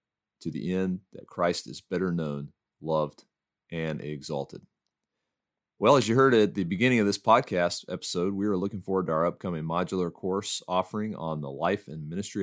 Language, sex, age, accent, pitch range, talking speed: English, male, 30-49, American, 75-95 Hz, 180 wpm